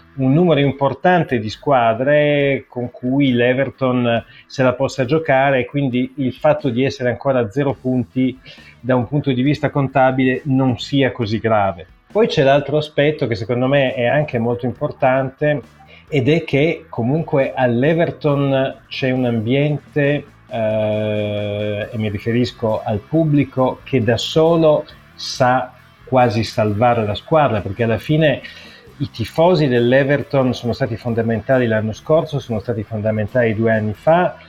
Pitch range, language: 115-140 Hz, Italian